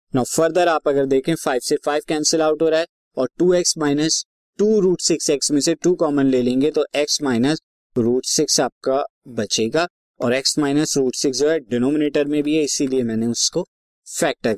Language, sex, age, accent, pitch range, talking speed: Hindi, male, 20-39, native, 125-160 Hz, 200 wpm